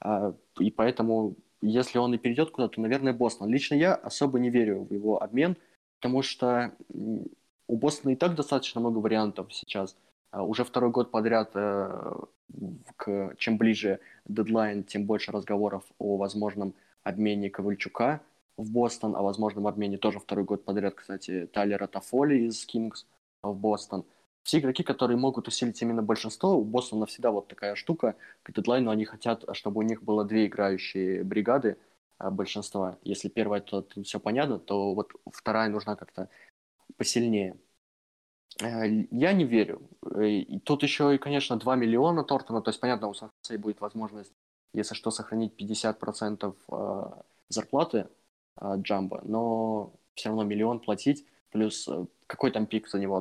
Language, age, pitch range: Russian, 20-39, 100-120 Hz